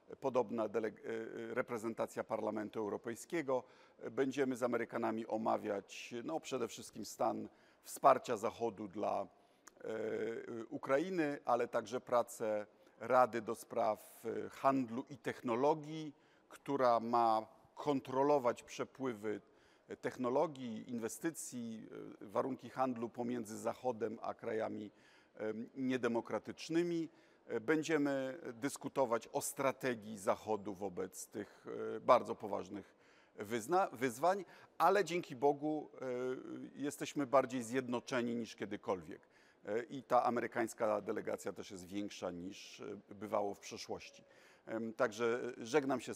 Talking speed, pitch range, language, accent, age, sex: 95 wpm, 115-145 Hz, Polish, native, 50-69, male